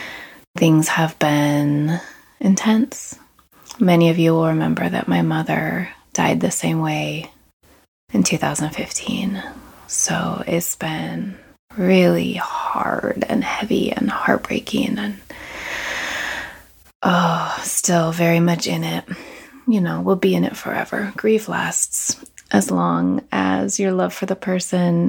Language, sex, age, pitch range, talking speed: English, female, 20-39, 155-190 Hz, 120 wpm